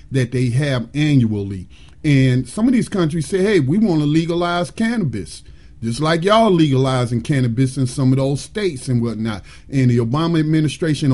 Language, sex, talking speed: English, male, 170 wpm